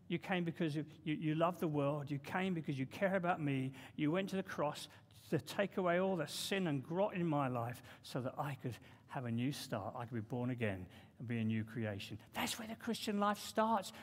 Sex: male